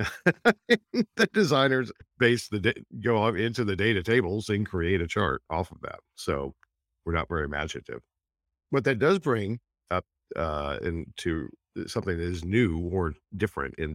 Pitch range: 75-100 Hz